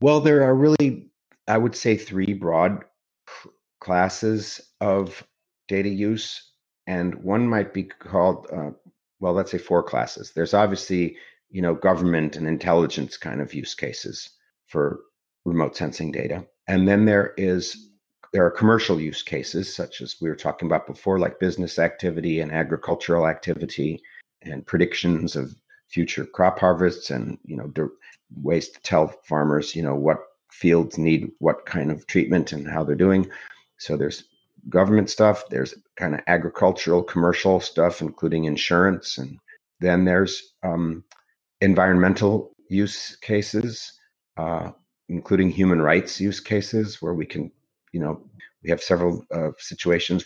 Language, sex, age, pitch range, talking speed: English, male, 50-69, 85-100 Hz, 145 wpm